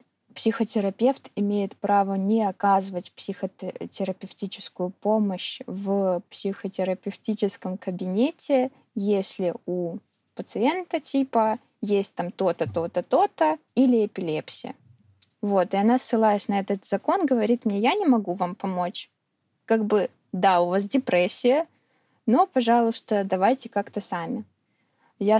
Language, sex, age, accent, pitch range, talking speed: Russian, female, 20-39, native, 190-235 Hz, 110 wpm